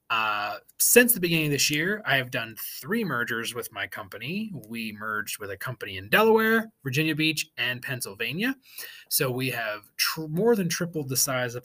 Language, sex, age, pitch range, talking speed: English, male, 30-49, 130-190 Hz, 185 wpm